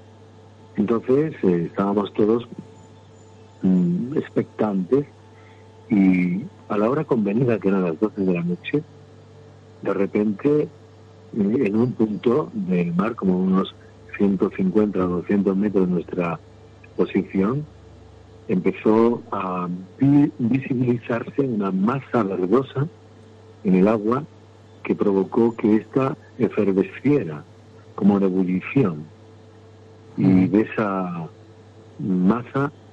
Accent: Argentinian